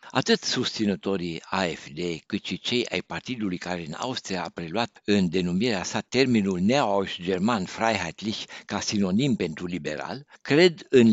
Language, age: Romanian, 60-79